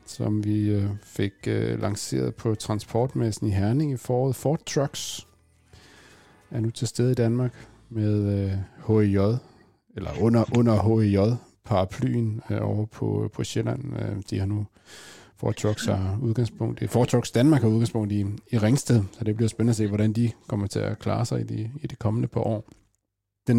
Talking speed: 165 wpm